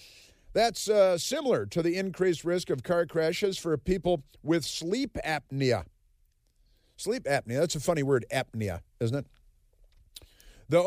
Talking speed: 140 wpm